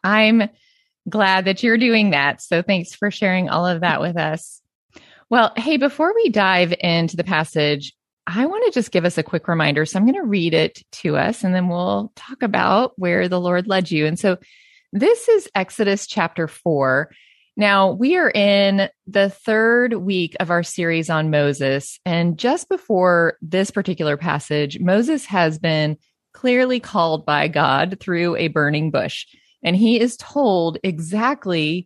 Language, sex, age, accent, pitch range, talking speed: English, female, 30-49, American, 160-210 Hz, 170 wpm